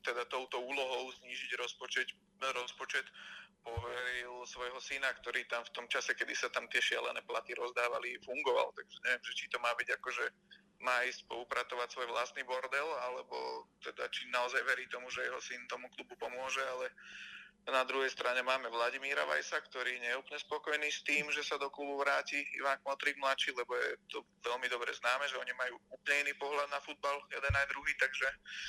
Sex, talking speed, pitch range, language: male, 180 wpm, 125-155 Hz, Slovak